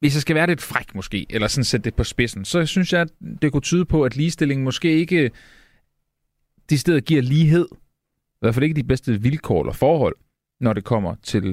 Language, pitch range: Danish, 110-150 Hz